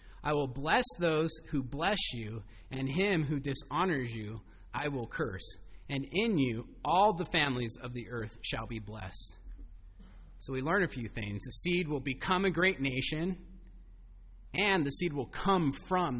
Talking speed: 170 wpm